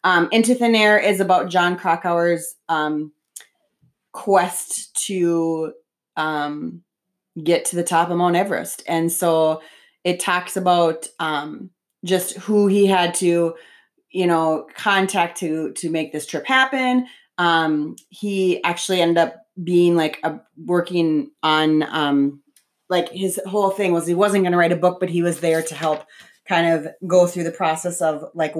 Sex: female